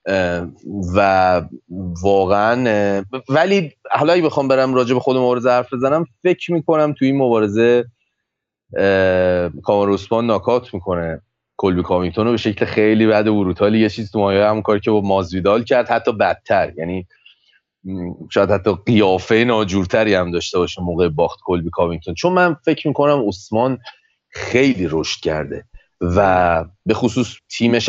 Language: Persian